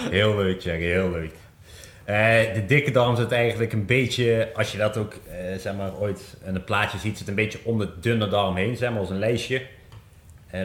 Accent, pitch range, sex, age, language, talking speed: Dutch, 95-115 Hz, male, 30-49, Dutch, 220 wpm